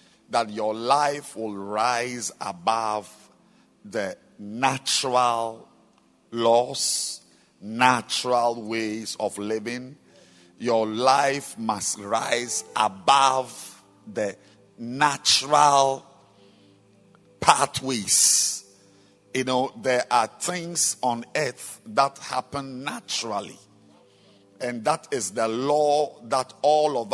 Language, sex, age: English, male, 50-69